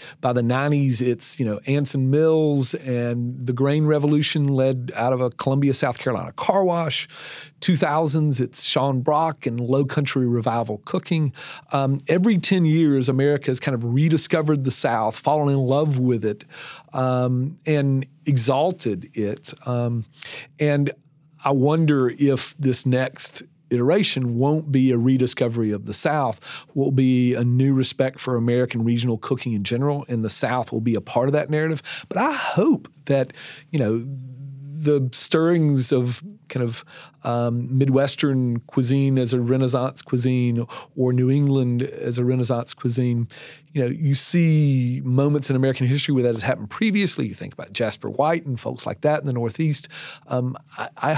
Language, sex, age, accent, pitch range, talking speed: English, male, 40-59, American, 125-150 Hz, 160 wpm